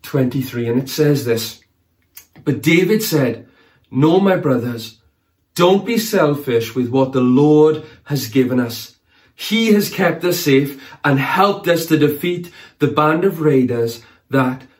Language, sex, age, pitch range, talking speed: English, male, 30-49, 135-190 Hz, 145 wpm